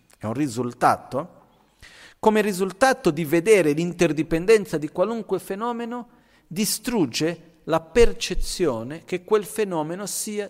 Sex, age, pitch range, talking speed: male, 40-59, 120-165 Hz, 105 wpm